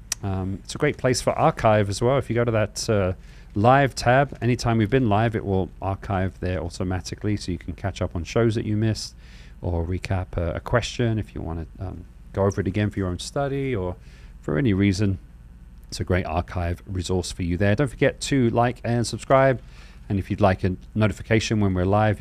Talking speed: 220 wpm